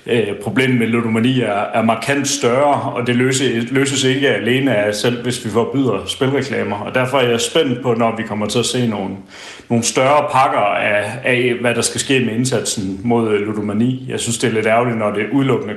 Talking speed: 190 wpm